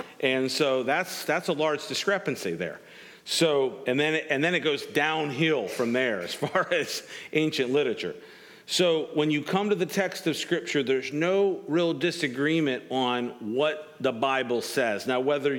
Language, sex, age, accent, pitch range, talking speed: English, male, 50-69, American, 130-165 Hz, 170 wpm